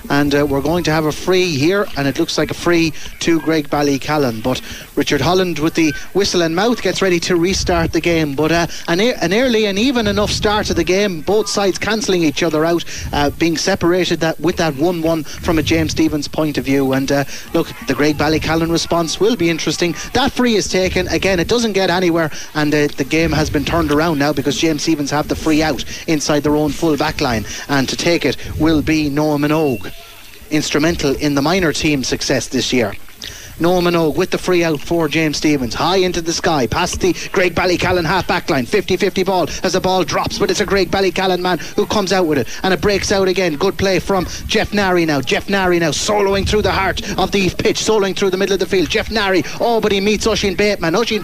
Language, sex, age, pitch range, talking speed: English, male, 30-49, 155-200 Hz, 230 wpm